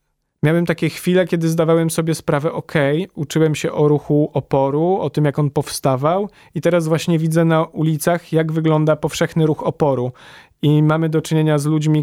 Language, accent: Polish, native